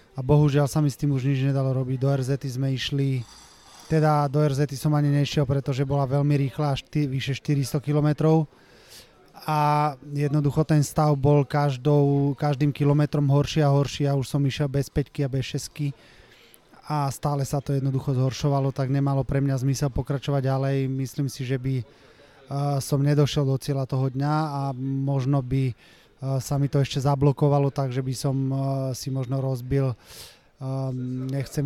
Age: 20-39